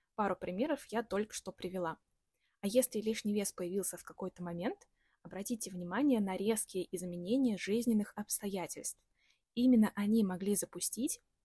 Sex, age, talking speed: female, 20-39, 130 wpm